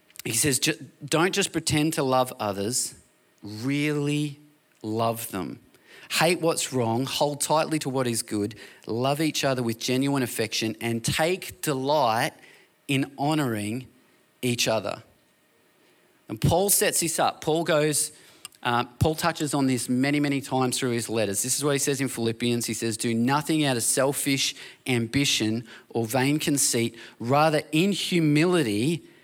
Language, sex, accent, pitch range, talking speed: English, male, Australian, 115-150 Hz, 150 wpm